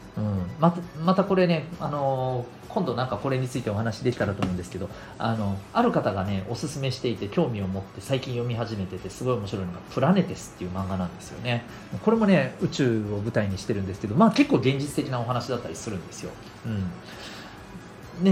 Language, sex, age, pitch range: Japanese, male, 40-59, 95-135 Hz